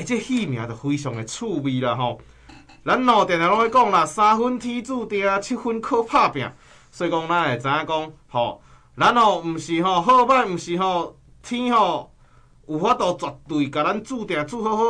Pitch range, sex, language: 150-225 Hz, male, Chinese